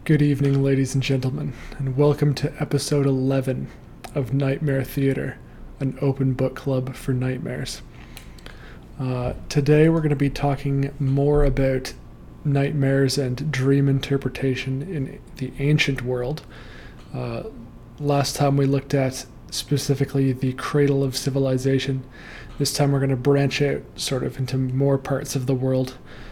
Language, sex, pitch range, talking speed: English, male, 130-145 Hz, 140 wpm